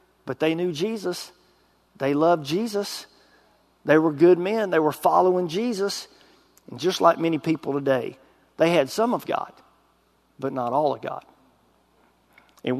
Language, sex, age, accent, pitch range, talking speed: English, male, 50-69, American, 150-210 Hz, 150 wpm